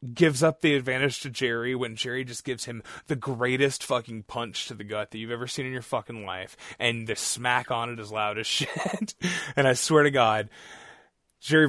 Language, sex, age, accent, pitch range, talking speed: English, male, 20-39, American, 105-130 Hz, 210 wpm